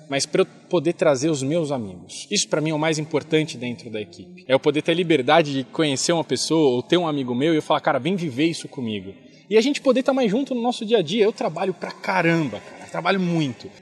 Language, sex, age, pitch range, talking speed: Portuguese, male, 20-39, 135-210 Hz, 265 wpm